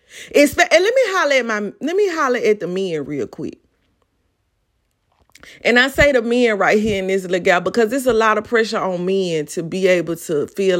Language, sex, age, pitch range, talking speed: English, female, 30-49, 170-235 Hz, 220 wpm